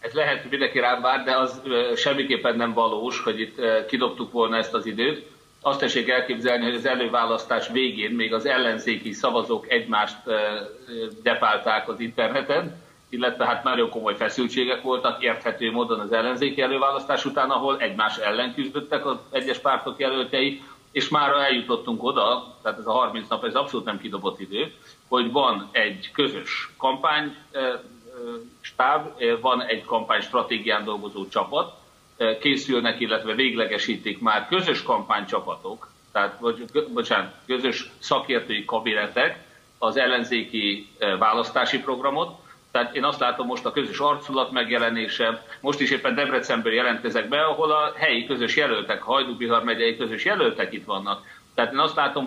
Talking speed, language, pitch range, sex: 145 wpm, Hungarian, 115-140 Hz, male